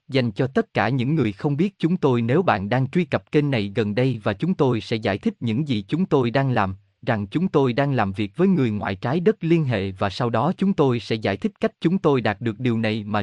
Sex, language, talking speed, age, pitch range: male, Vietnamese, 270 wpm, 20-39, 110-155 Hz